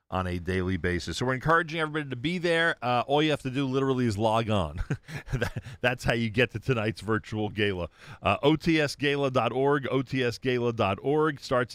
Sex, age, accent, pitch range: male, 40-59, American, 100-130 Hz